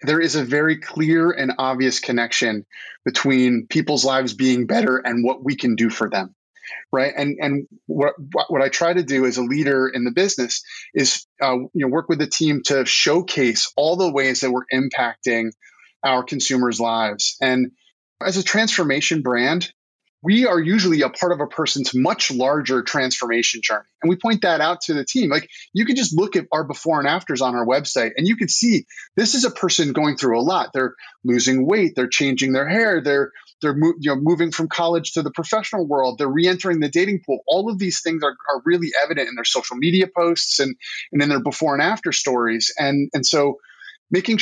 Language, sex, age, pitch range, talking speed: English, male, 30-49, 130-170 Hz, 205 wpm